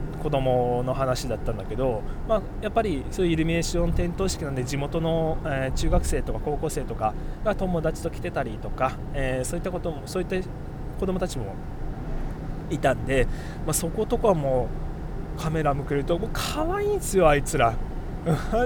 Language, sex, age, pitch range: Japanese, male, 20-39, 130-185 Hz